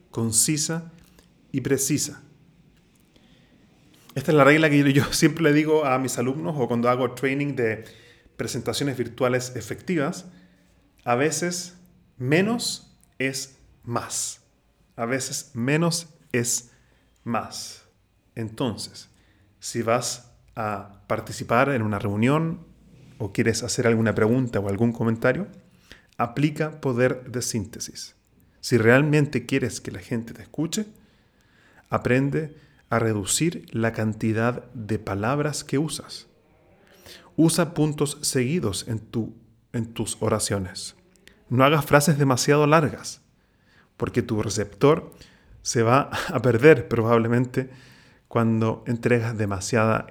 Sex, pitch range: male, 110-145 Hz